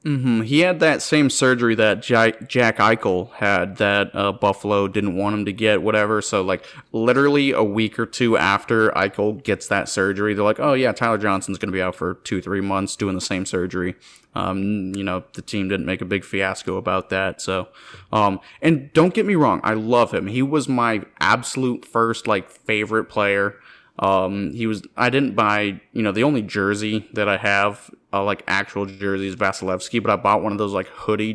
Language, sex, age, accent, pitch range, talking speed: English, male, 20-39, American, 100-115 Hz, 200 wpm